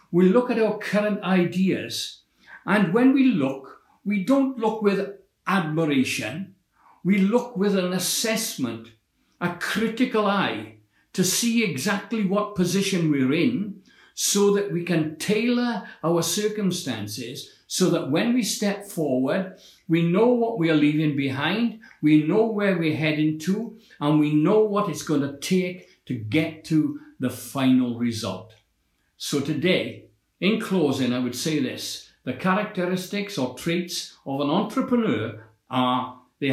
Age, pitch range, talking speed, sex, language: 60-79, 135-205 Hz, 140 wpm, male, English